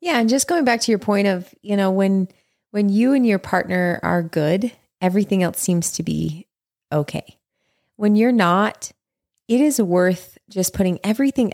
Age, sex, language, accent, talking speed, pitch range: 30-49, female, English, American, 175 wpm, 170-210 Hz